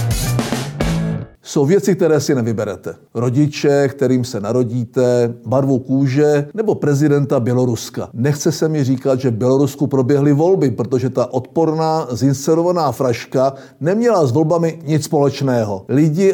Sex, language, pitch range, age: male, Czech, 130-165 Hz, 50-69